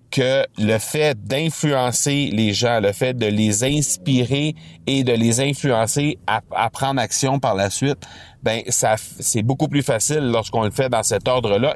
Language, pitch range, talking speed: French, 100-130 Hz, 170 wpm